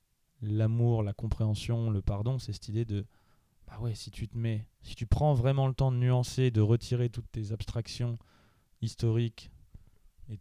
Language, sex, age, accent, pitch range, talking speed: French, male, 20-39, French, 105-120 Hz, 175 wpm